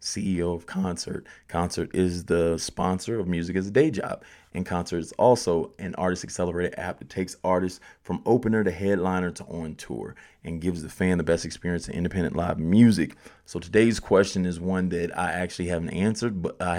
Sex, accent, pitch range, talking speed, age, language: male, American, 90-100 Hz, 195 wpm, 30-49, English